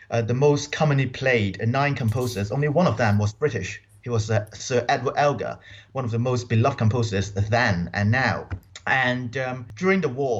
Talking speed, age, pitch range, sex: 195 wpm, 30-49, 110-140 Hz, male